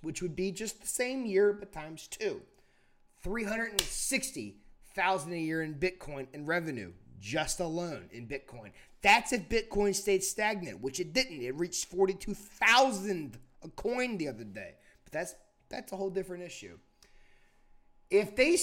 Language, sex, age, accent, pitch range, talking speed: English, male, 30-49, American, 150-245 Hz, 165 wpm